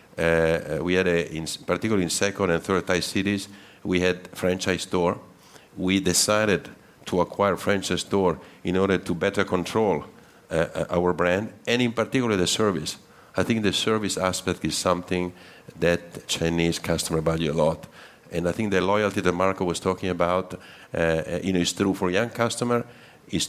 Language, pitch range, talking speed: English, 85-100 Hz, 170 wpm